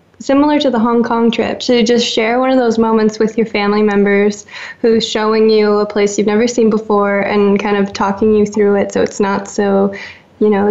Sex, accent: female, American